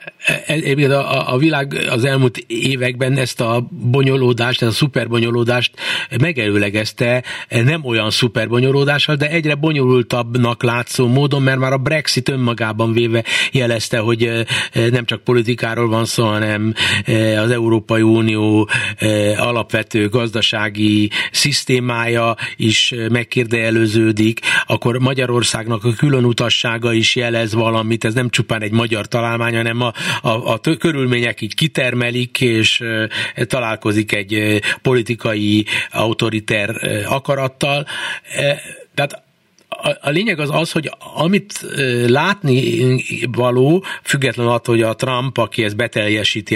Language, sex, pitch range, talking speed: Hungarian, male, 115-140 Hz, 110 wpm